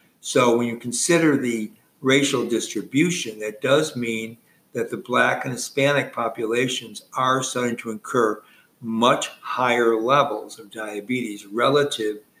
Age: 60-79